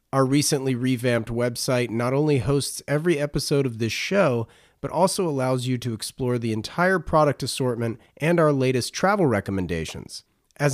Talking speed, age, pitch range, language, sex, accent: 155 wpm, 30-49, 120-150 Hz, English, male, American